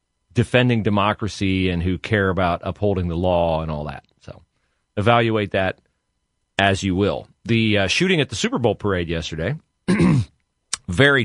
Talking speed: 150 wpm